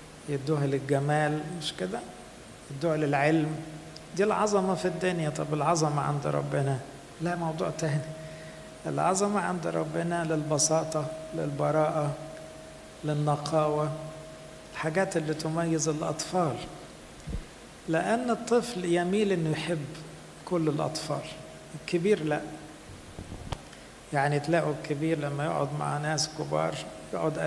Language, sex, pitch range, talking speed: English, male, 150-165 Hz, 100 wpm